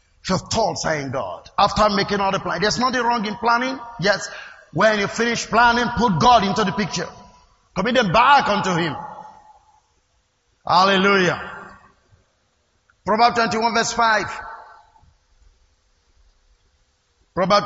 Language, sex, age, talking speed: English, male, 50-69, 120 wpm